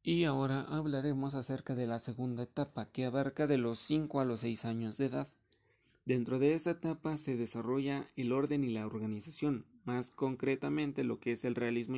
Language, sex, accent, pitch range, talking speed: Spanish, male, Mexican, 120-150 Hz, 185 wpm